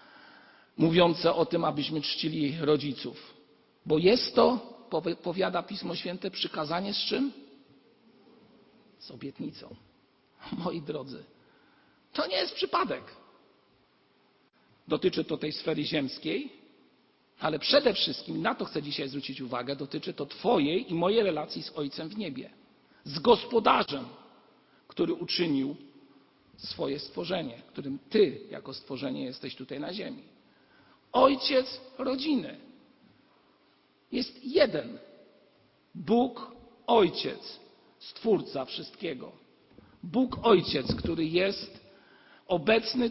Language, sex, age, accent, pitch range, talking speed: Polish, male, 50-69, native, 155-235 Hz, 105 wpm